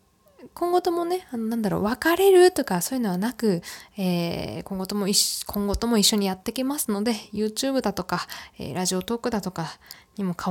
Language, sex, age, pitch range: Japanese, female, 20-39, 190-235 Hz